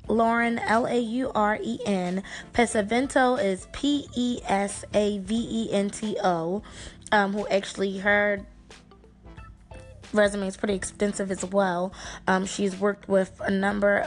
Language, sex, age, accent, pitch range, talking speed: English, female, 20-39, American, 195-225 Hz, 125 wpm